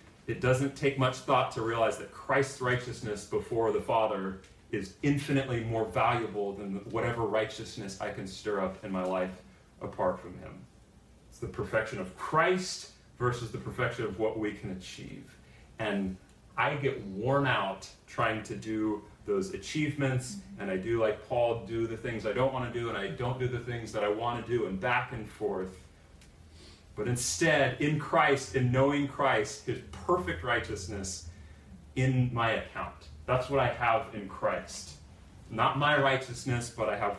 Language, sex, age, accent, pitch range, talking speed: English, male, 30-49, American, 105-135 Hz, 170 wpm